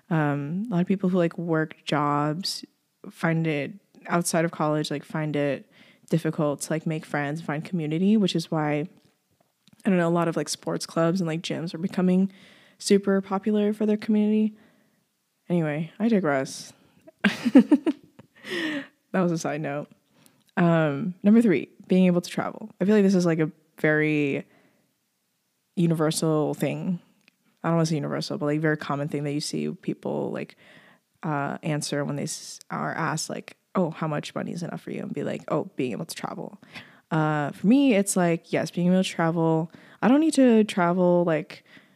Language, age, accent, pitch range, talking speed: English, 20-39, American, 155-200 Hz, 180 wpm